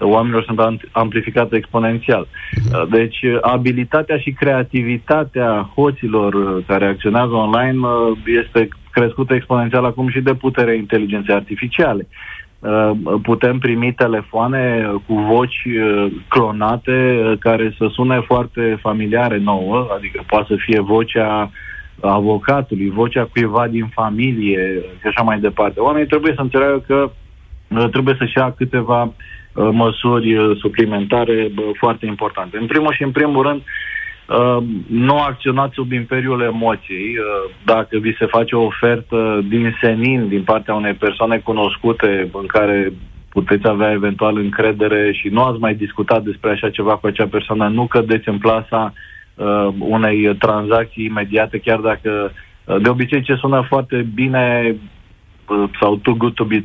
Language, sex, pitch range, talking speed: Romanian, male, 105-125 Hz, 130 wpm